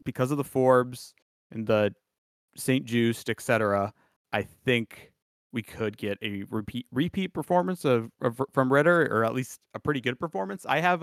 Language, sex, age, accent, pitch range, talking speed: English, male, 30-49, American, 105-130 Hz, 175 wpm